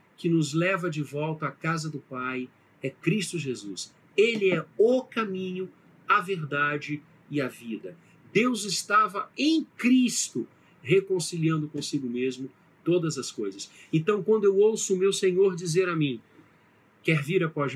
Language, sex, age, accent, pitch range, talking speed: Portuguese, male, 50-69, Brazilian, 150-205 Hz, 150 wpm